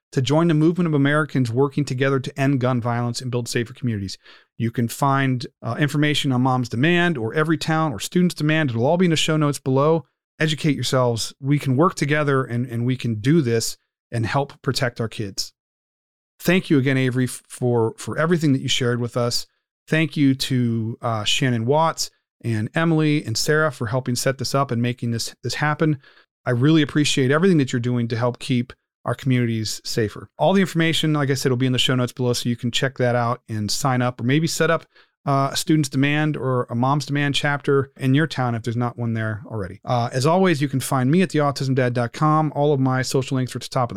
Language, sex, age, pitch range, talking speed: English, male, 40-59, 120-155 Hz, 220 wpm